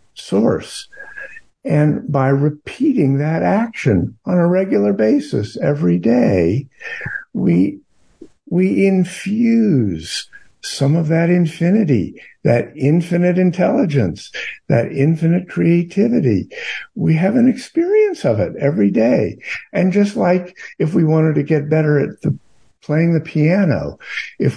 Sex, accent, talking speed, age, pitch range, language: male, American, 115 wpm, 60-79, 125-175 Hz, English